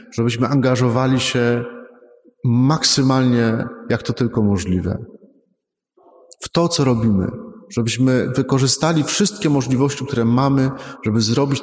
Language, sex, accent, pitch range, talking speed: Polish, male, native, 115-150 Hz, 105 wpm